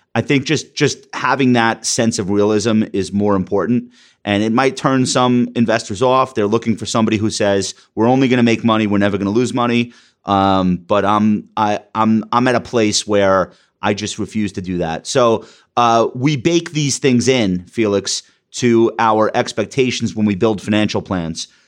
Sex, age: male, 30-49